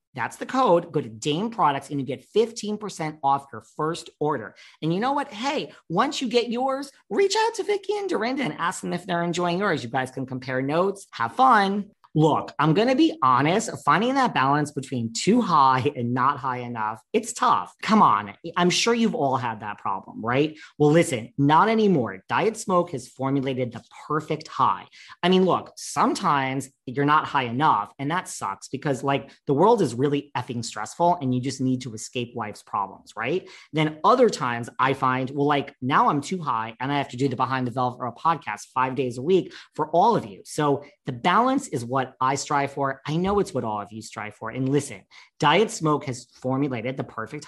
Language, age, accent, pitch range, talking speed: English, 40-59, American, 130-180 Hz, 210 wpm